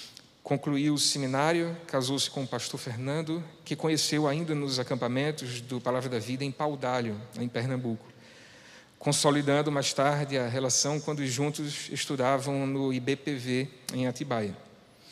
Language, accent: Portuguese, Brazilian